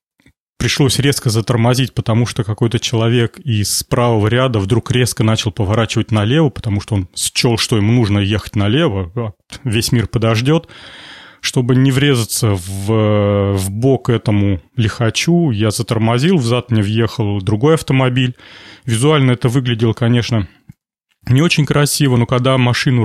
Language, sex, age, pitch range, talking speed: Russian, male, 30-49, 110-135 Hz, 135 wpm